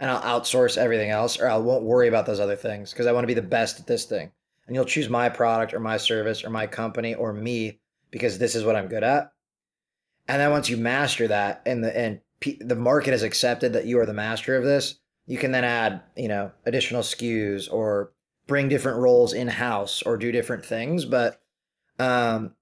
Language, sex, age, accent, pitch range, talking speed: English, male, 20-39, American, 110-130 Hz, 220 wpm